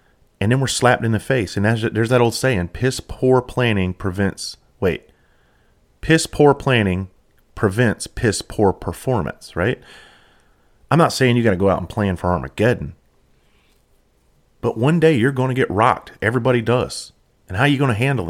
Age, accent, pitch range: 30-49, American, 95-120 Hz